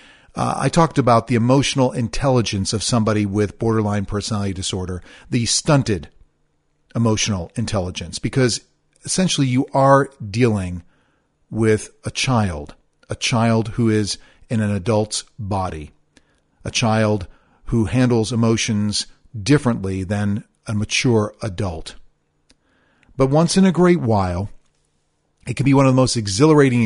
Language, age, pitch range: English, 40-59, 105-135 Hz